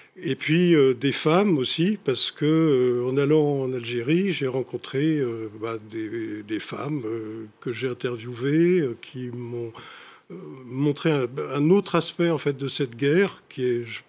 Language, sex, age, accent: French, male, 50-69, French